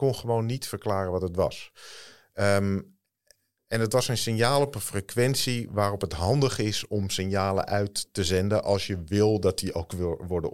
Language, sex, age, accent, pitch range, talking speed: Dutch, male, 50-69, Dutch, 90-110 Hz, 190 wpm